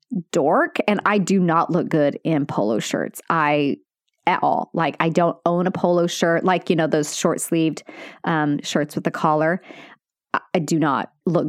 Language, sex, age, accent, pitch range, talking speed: English, female, 30-49, American, 160-220 Hz, 190 wpm